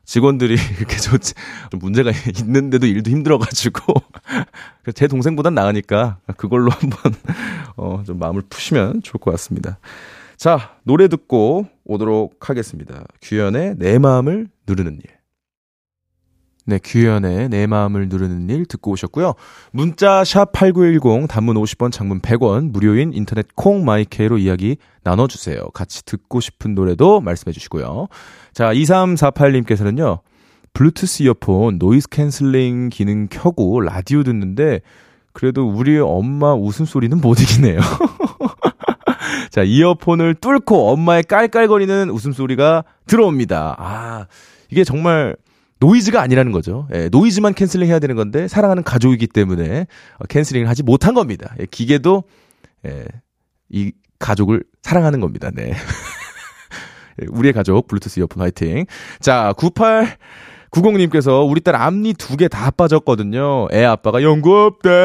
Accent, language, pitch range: native, Korean, 105-160 Hz